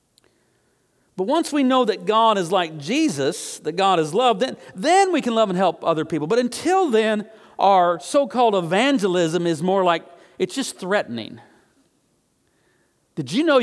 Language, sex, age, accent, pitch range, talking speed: English, male, 50-69, American, 185-270 Hz, 165 wpm